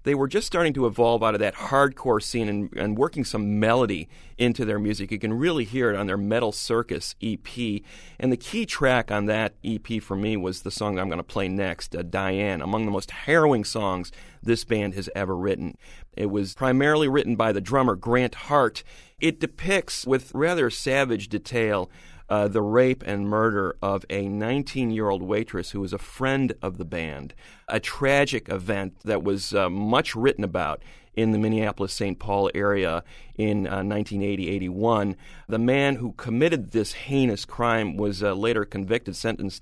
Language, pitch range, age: English, 100-125 Hz, 40-59